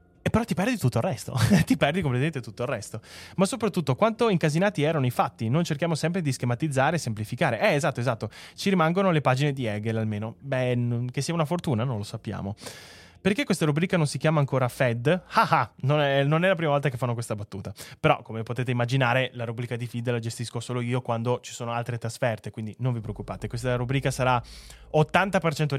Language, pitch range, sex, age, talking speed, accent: Italian, 120-160 Hz, male, 20-39, 205 wpm, native